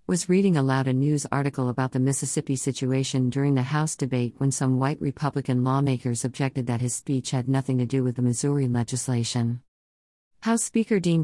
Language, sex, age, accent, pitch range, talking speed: English, female, 50-69, American, 130-150 Hz, 180 wpm